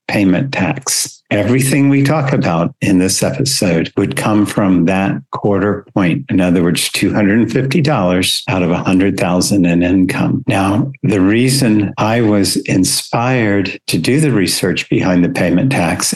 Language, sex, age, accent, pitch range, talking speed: English, male, 60-79, American, 90-120 Hz, 140 wpm